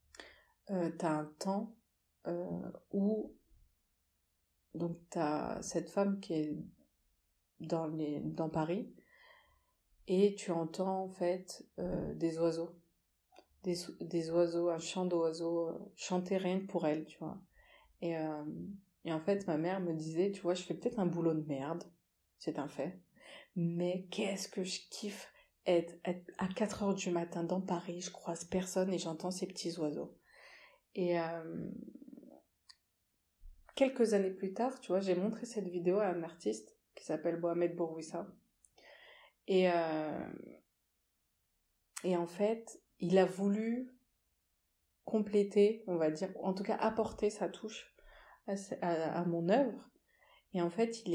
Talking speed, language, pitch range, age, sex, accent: 150 wpm, French, 165-200 Hz, 30-49, female, French